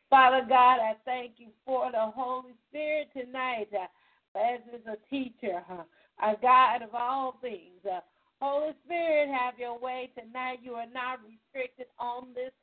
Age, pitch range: 40-59, 230-260 Hz